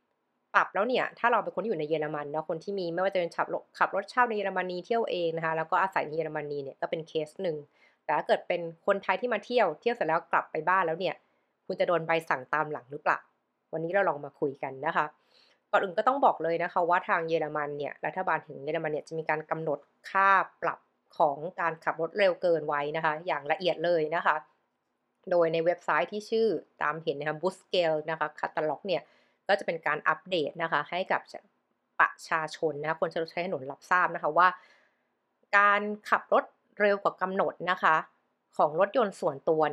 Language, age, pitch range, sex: Thai, 20-39, 155-195 Hz, female